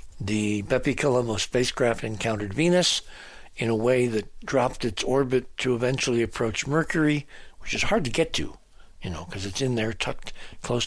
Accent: American